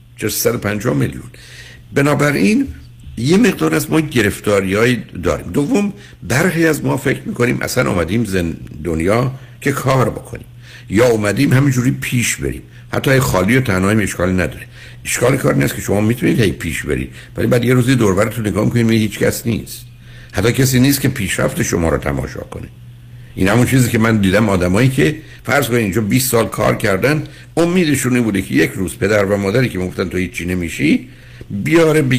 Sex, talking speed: male, 175 wpm